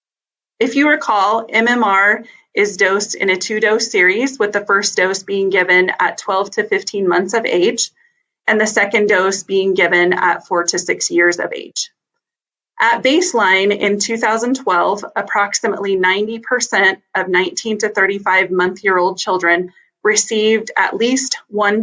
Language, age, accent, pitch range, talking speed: English, 30-49, American, 185-230 Hz, 145 wpm